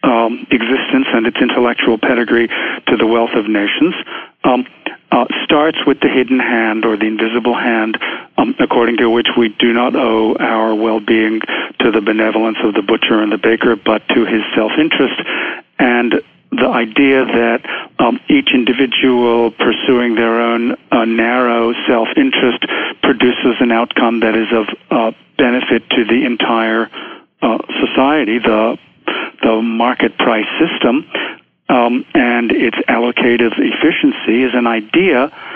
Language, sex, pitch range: English, male, 115-130 Hz